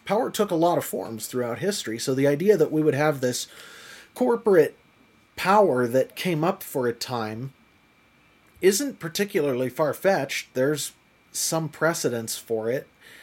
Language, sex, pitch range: English, male, 135-180 Hz